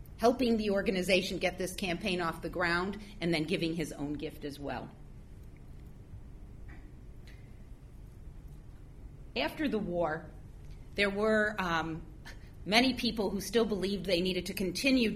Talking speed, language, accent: 125 wpm, English, American